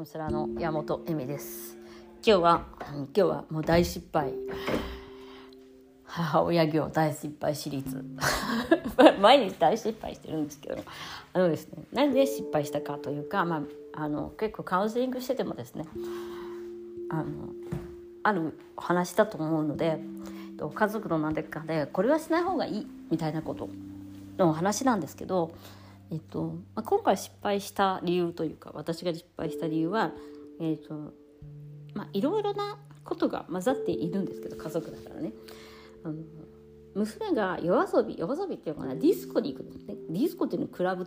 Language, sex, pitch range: Japanese, female, 140-205 Hz